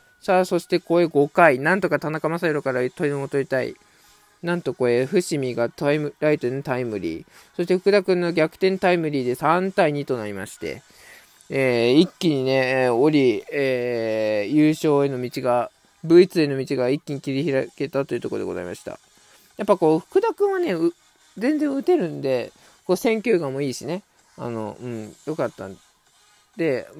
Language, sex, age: Japanese, male, 20-39